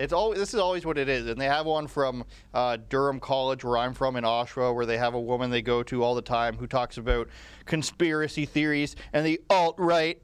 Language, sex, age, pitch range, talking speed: English, male, 30-49, 120-145 Hz, 235 wpm